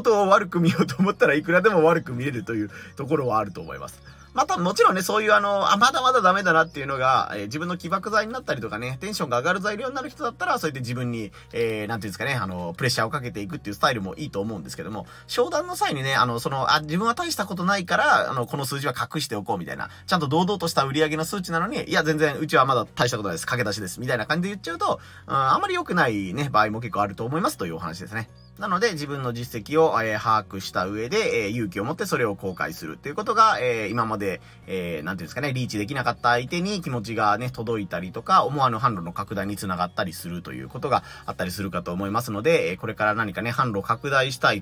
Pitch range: 110-180 Hz